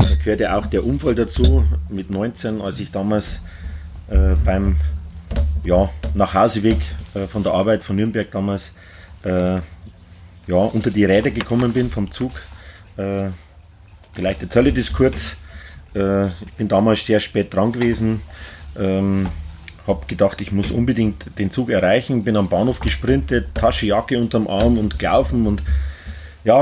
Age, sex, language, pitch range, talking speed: 30-49, male, German, 90-115 Hz, 145 wpm